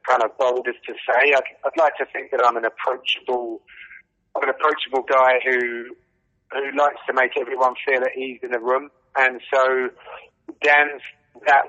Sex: male